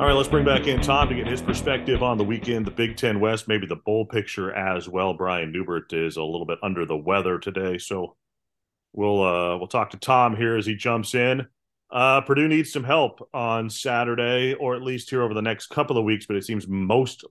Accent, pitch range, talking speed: American, 100-125 Hz, 230 wpm